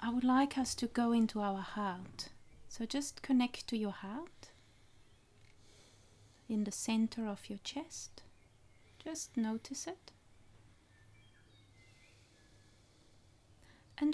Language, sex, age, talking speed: English, female, 30-49, 105 wpm